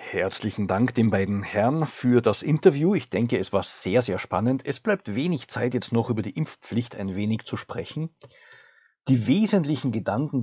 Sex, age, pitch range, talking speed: male, 50-69, 110-135 Hz, 180 wpm